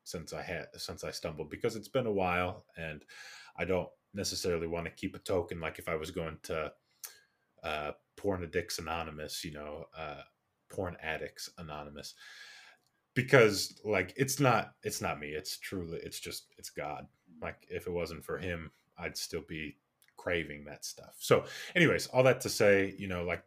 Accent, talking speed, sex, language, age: American, 180 wpm, male, English, 20-39